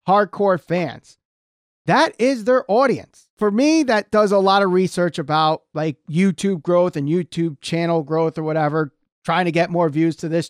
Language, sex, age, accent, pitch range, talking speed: English, male, 30-49, American, 160-210 Hz, 175 wpm